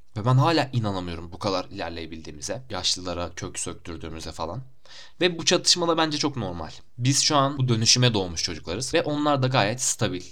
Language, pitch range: Turkish, 95-135 Hz